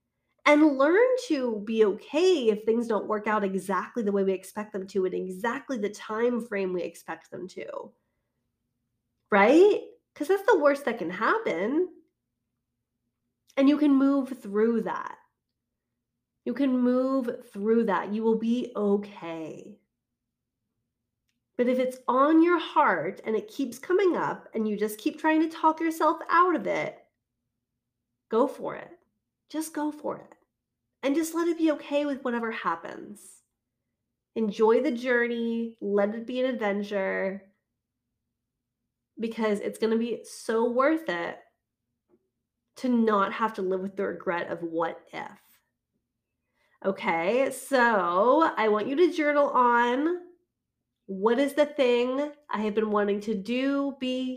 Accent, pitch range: American, 195-285 Hz